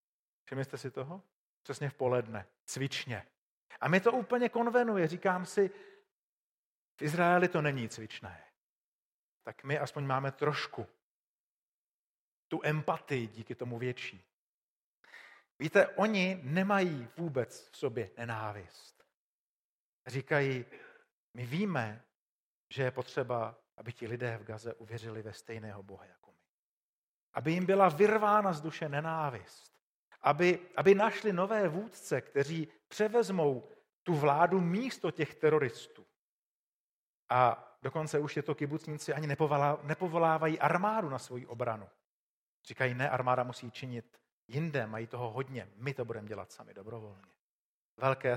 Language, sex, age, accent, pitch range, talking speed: Czech, male, 40-59, native, 125-180 Hz, 125 wpm